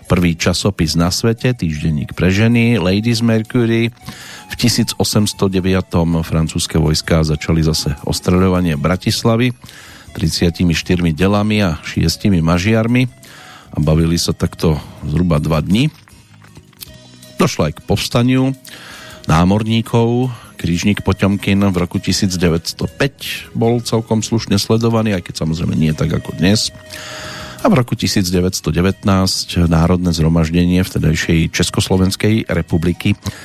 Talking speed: 105 wpm